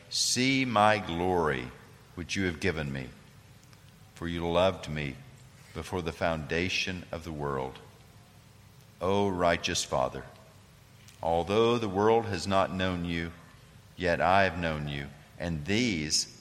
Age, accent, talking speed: 50-69, American, 130 wpm